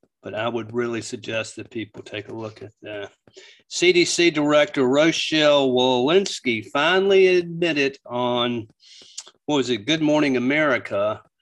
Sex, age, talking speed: male, 40-59, 130 wpm